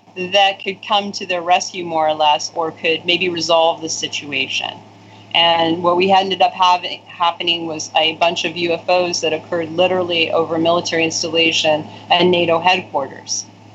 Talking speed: 155 wpm